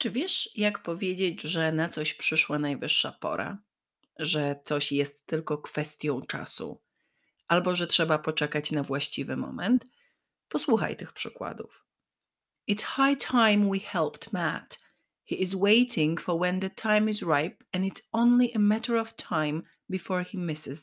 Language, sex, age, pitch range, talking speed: Polish, female, 30-49, 160-220 Hz, 145 wpm